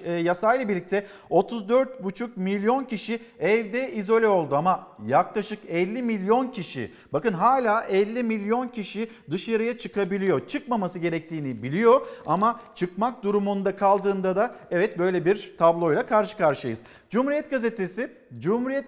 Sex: male